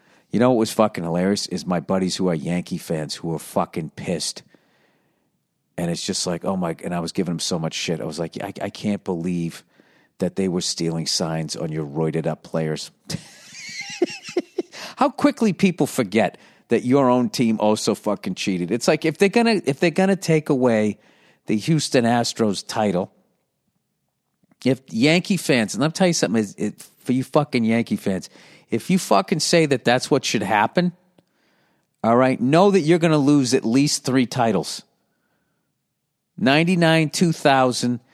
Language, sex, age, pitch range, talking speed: English, male, 50-69, 115-170 Hz, 175 wpm